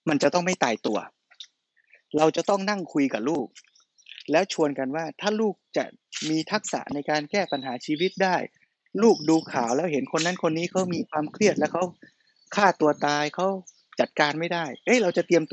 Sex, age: male, 20-39